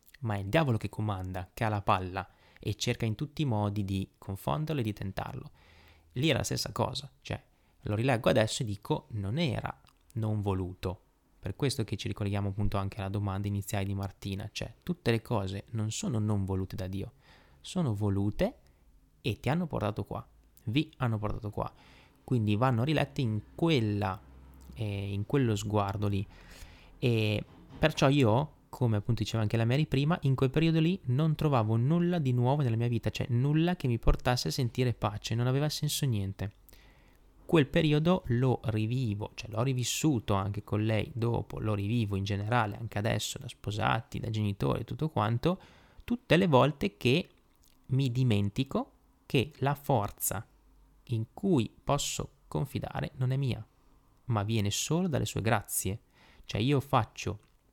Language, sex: Italian, male